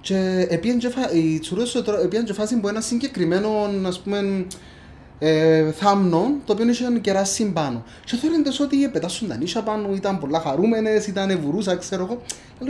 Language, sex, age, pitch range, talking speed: Greek, male, 30-49, 155-220 Hz, 140 wpm